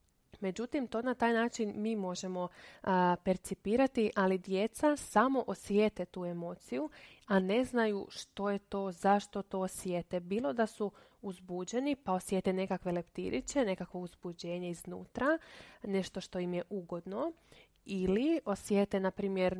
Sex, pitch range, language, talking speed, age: female, 185-220 Hz, Croatian, 135 wpm, 20-39